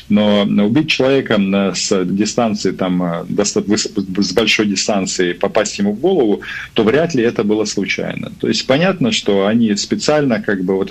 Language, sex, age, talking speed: Russian, male, 40-59, 155 wpm